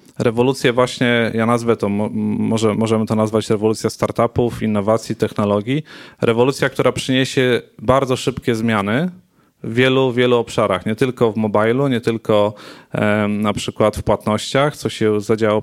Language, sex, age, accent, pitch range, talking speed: Polish, male, 30-49, native, 110-125 Hz, 140 wpm